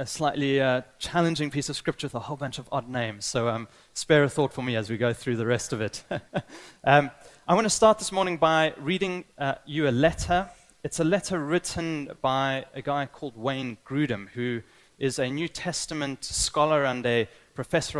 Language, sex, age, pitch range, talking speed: English, male, 30-49, 120-160 Hz, 205 wpm